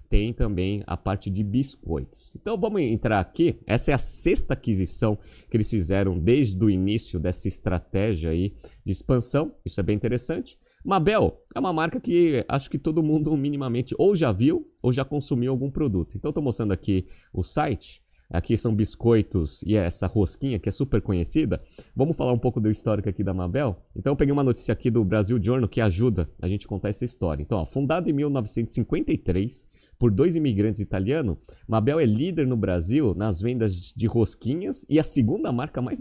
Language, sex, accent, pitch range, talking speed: Portuguese, male, Brazilian, 95-130 Hz, 190 wpm